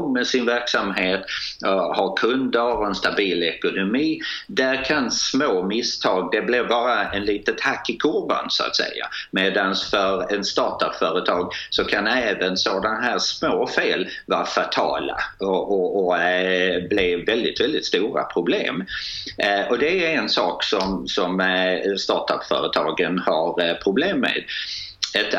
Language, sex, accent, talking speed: Swedish, male, native, 135 wpm